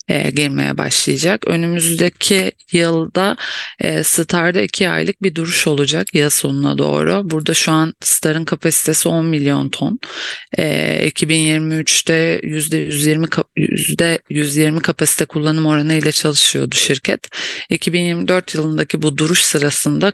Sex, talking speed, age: female, 105 wpm, 30-49